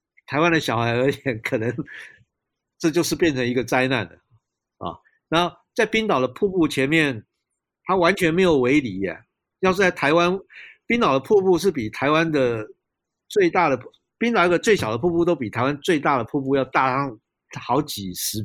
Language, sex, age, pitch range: Chinese, male, 50-69, 130-185 Hz